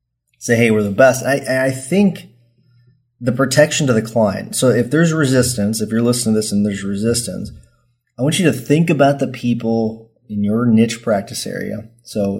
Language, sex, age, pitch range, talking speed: English, male, 30-49, 105-120 Hz, 190 wpm